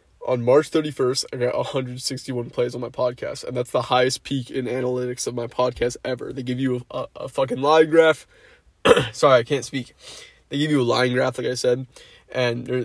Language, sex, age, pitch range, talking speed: English, male, 20-39, 120-130 Hz, 200 wpm